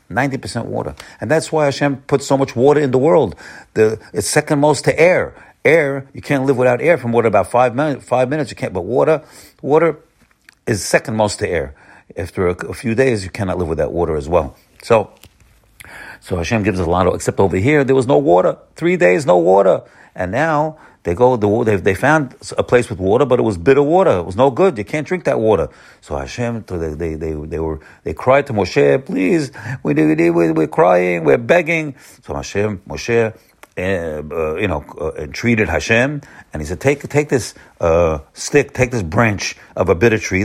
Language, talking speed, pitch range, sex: English, 210 wpm, 105-145 Hz, male